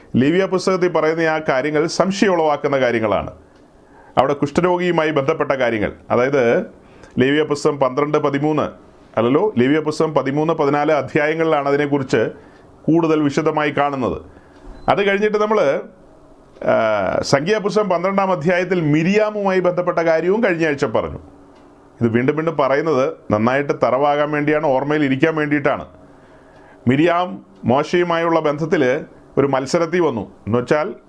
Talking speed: 105 wpm